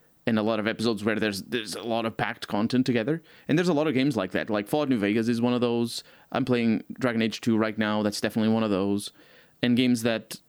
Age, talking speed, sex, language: 20-39, 255 wpm, male, English